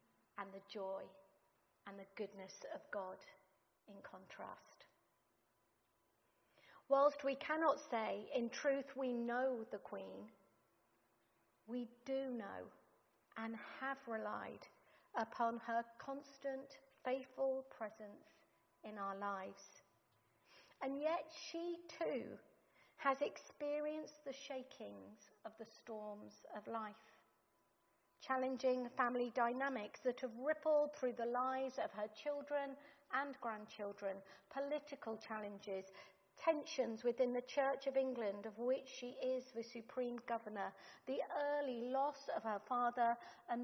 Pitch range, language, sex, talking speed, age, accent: 205-270 Hz, English, female, 115 wpm, 50-69, British